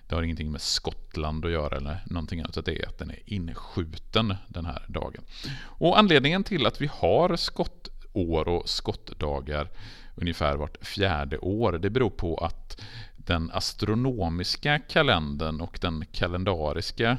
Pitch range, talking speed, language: 80-115 Hz, 145 wpm, Swedish